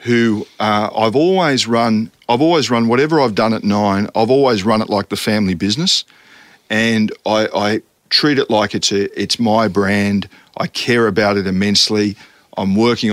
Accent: Australian